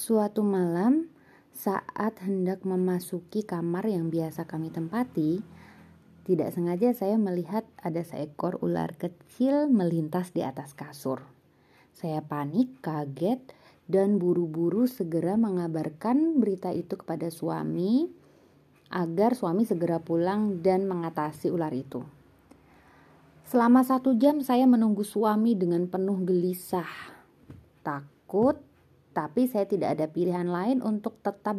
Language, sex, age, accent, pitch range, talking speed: Indonesian, female, 20-39, native, 170-215 Hz, 110 wpm